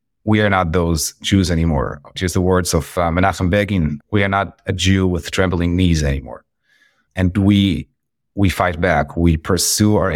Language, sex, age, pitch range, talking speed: English, male, 30-49, 85-105 Hz, 175 wpm